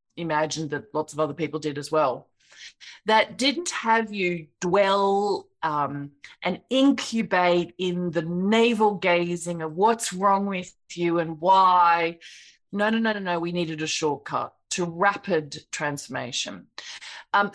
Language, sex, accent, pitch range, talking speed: English, female, Australian, 165-215 Hz, 140 wpm